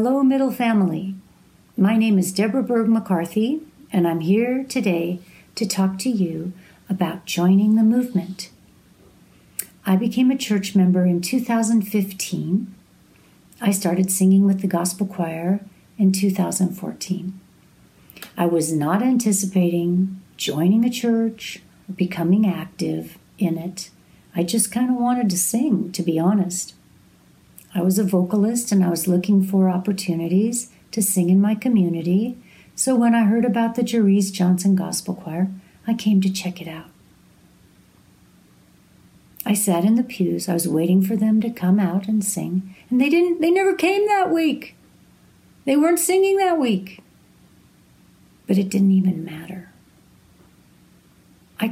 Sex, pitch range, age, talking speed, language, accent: female, 185-225 Hz, 60-79, 145 wpm, English, American